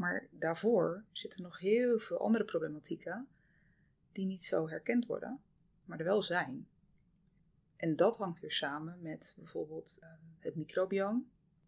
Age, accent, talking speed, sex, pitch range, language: 20-39, Dutch, 135 wpm, female, 160-215 Hz, Dutch